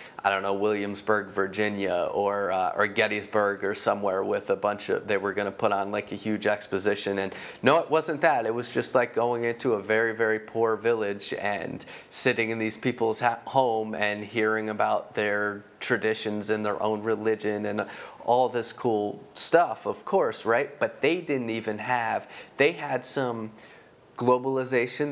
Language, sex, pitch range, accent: English, male, 105-125 Hz, American